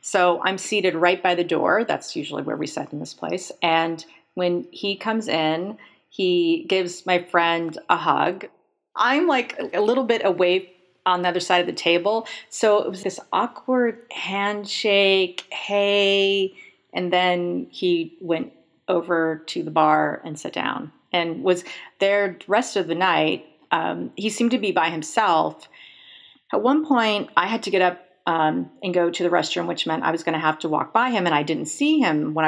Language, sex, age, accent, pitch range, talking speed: English, female, 40-59, American, 165-205 Hz, 190 wpm